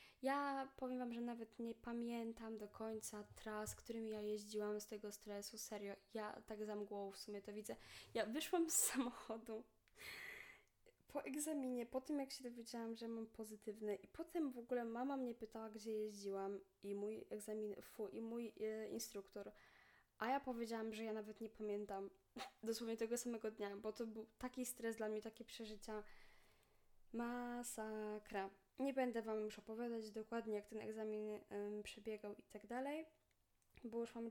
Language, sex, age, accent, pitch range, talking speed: Polish, female, 10-29, native, 215-240 Hz, 165 wpm